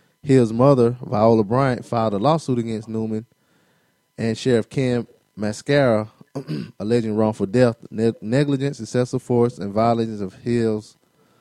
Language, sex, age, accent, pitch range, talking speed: English, male, 20-39, American, 105-130 Hz, 120 wpm